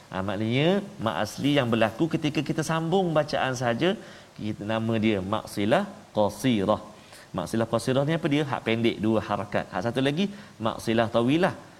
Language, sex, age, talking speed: Malayalam, male, 40-59, 160 wpm